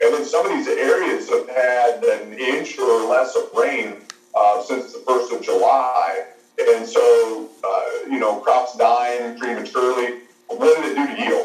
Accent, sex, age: American, male, 40-59